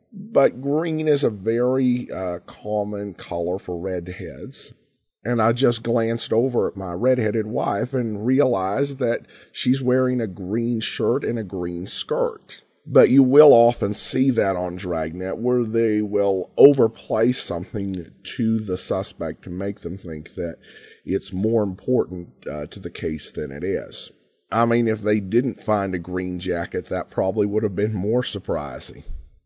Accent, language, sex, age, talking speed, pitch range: American, English, male, 40-59, 160 wpm, 100-130 Hz